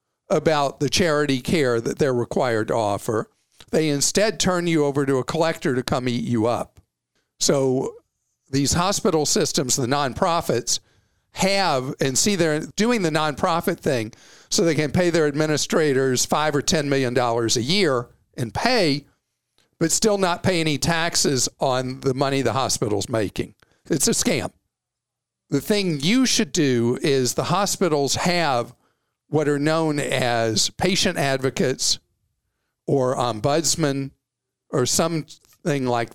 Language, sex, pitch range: English, male, 130-175 Hz